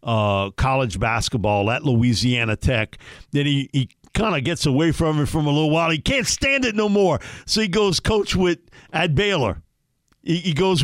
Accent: American